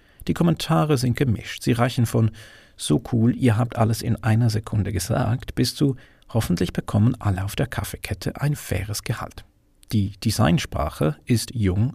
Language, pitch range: German, 100-130 Hz